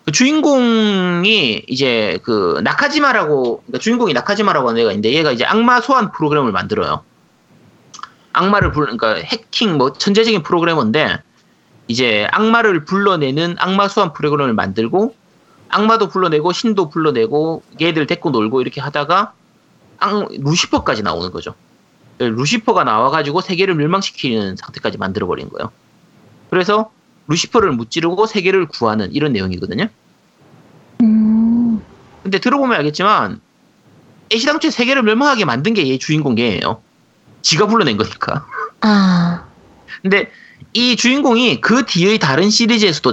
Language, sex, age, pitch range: Korean, male, 30-49, 150-220 Hz